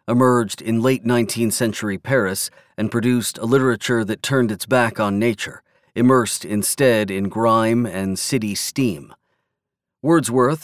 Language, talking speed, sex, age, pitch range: English, 135 wpm, male, 40-59, 105-125 Hz